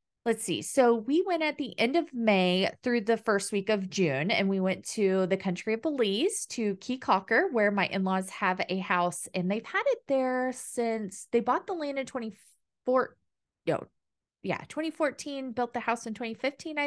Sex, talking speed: female, 190 wpm